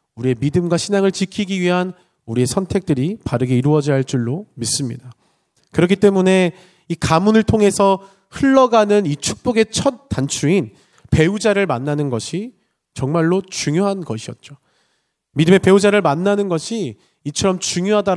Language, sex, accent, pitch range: Korean, male, native, 140-195 Hz